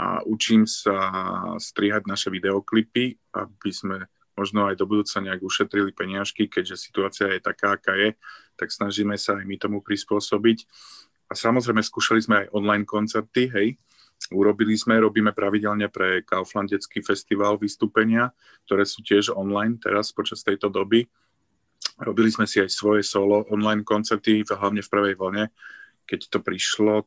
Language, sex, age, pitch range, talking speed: Slovak, male, 30-49, 95-110 Hz, 150 wpm